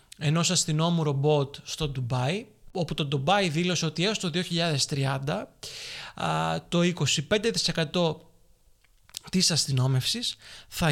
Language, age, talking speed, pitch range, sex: Greek, 20-39, 100 wpm, 140-180 Hz, male